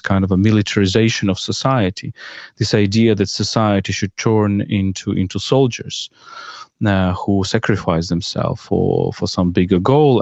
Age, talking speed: 40-59, 140 wpm